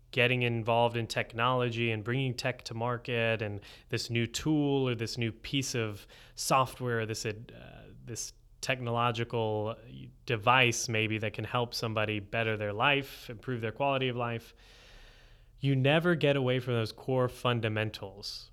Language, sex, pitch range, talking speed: English, male, 110-120 Hz, 145 wpm